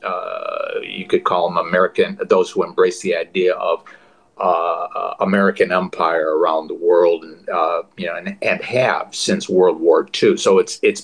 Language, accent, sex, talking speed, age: English, American, male, 170 wpm, 60-79